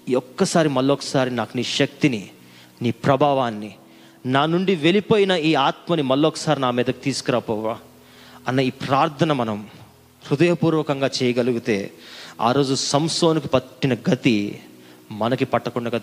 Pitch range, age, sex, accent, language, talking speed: 125-155 Hz, 30-49, male, native, Telugu, 110 wpm